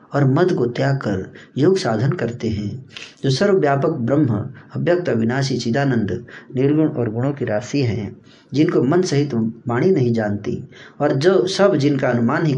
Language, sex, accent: Hindi, male, native